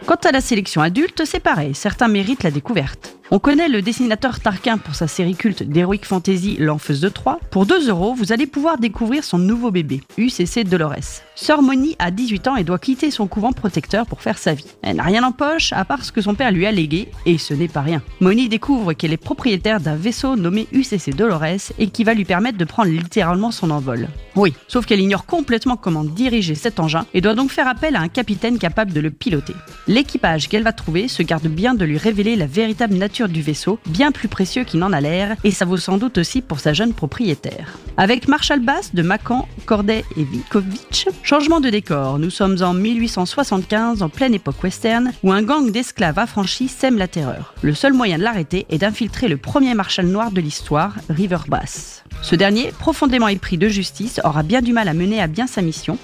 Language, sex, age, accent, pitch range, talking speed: French, female, 30-49, French, 175-245 Hz, 215 wpm